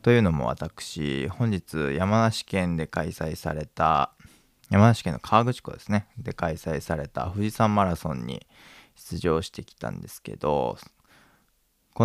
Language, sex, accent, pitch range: Japanese, male, native, 85-110 Hz